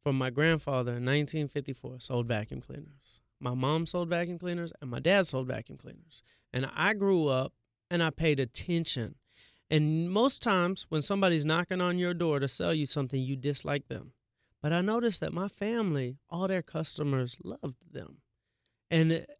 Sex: male